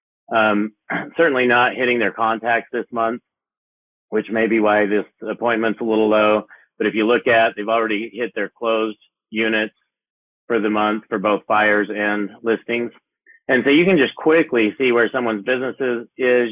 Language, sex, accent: English, male, American